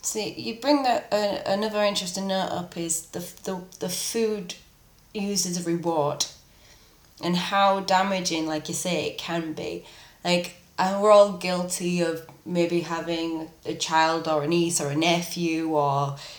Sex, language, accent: female, English, British